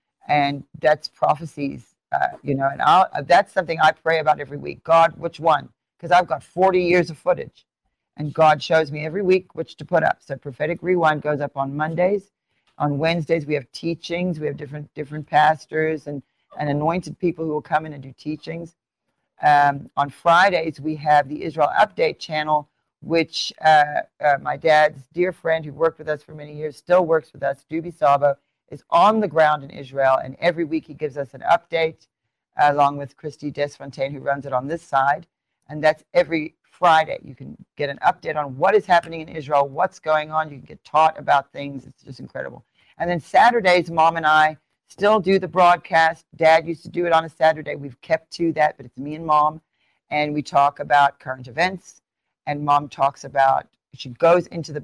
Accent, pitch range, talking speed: American, 145-165 Hz, 200 wpm